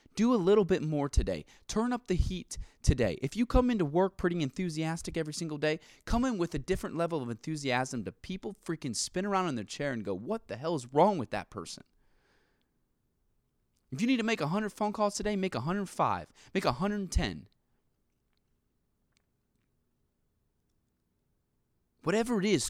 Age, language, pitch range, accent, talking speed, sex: 20-39, English, 140-210 Hz, American, 165 wpm, male